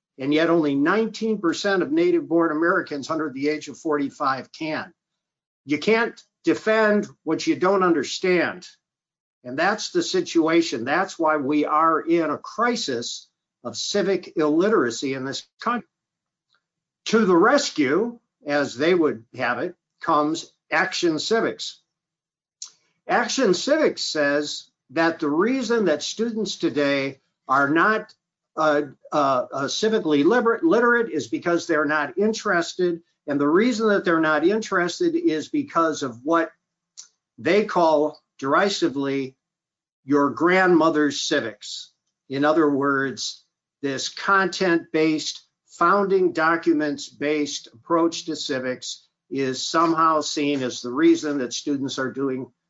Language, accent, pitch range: English, American, 145-195 Hz